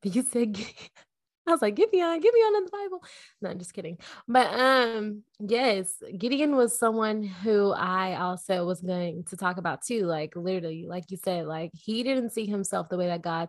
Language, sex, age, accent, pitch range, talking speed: English, female, 20-39, American, 180-220 Hz, 215 wpm